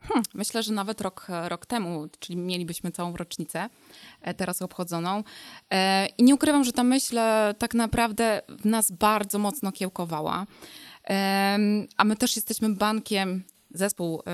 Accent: native